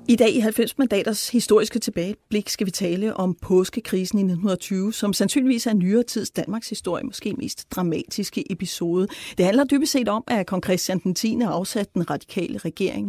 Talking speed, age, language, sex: 170 wpm, 40-59, Danish, female